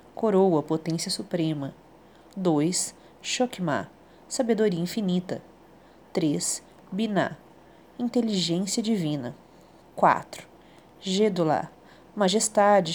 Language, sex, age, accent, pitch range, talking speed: Portuguese, female, 40-59, Brazilian, 170-220 Hz, 65 wpm